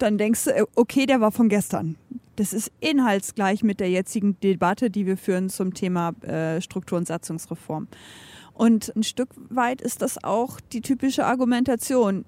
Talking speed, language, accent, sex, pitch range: 160 wpm, German, German, female, 200-255 Hz